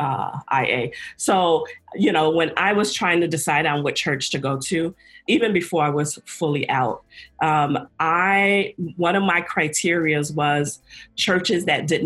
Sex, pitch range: female, 140-160 Hz